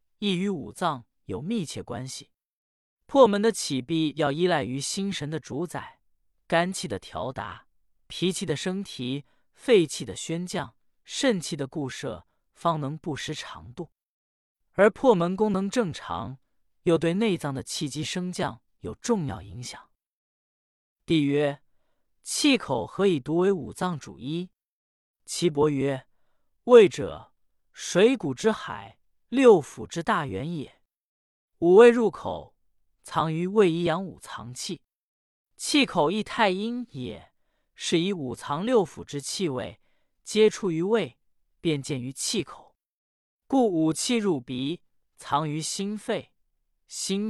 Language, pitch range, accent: Chinese, 145-210 Hz, native